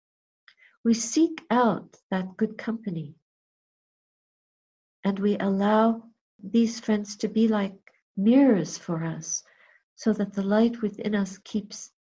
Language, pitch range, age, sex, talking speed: English, 190-230 Hz, 50-69, female, 120 wpm